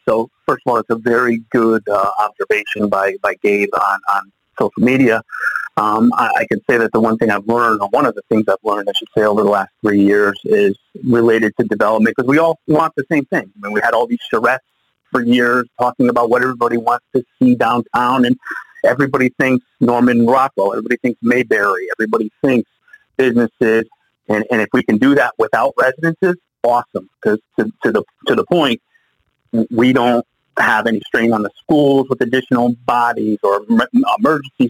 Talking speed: 190 wpm